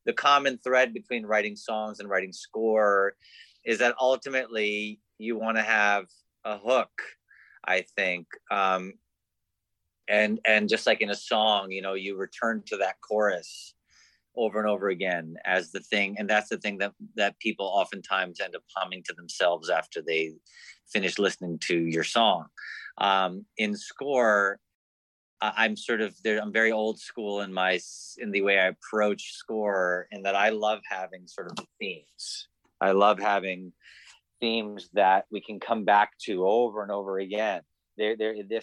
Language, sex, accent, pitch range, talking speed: English, male, American, 95-110 Hz, 165 wpm